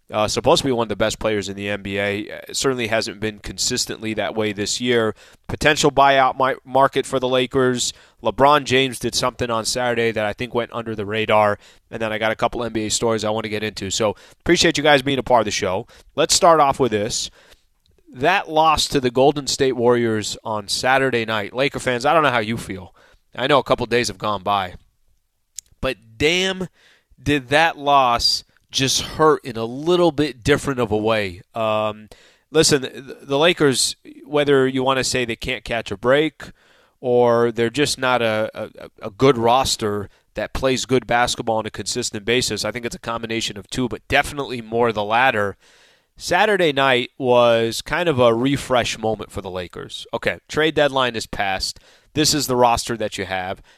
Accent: American